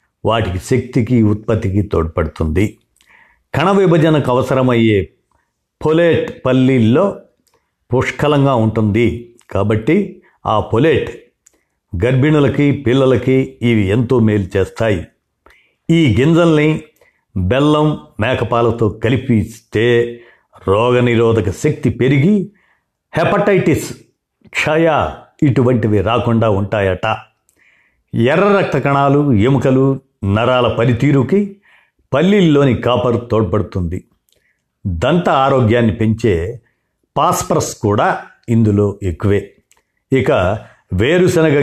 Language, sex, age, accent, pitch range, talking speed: Telugu, male, 50-69, native, 110-145 Hz, 75 wpm